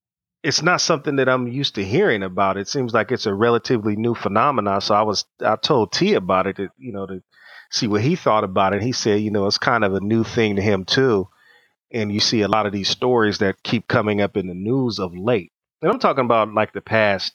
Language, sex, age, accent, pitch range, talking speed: English, male, 30-49, American, 95-110 Hz, 250 wpm